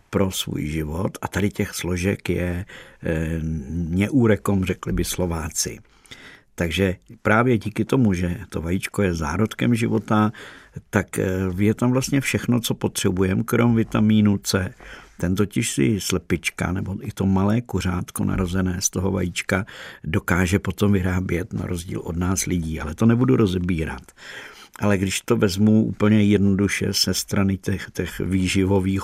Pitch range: 90-110 Hz